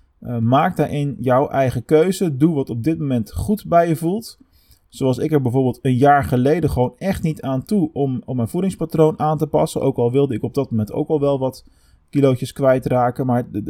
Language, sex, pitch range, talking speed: Dutch, male, 120-155 Hz, 220 wpm